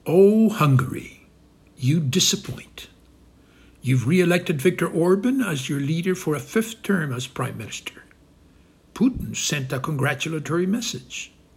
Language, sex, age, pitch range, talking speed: English, male, 60-79, 130-200 Hz, 120 wpm